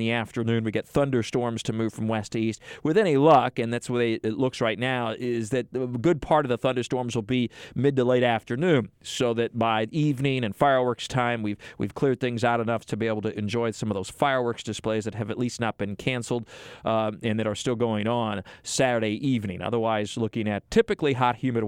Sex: male